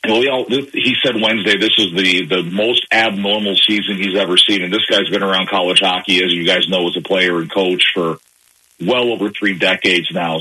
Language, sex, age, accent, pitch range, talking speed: English, male, 40-59, American, 95-115 Hz, 220 wpm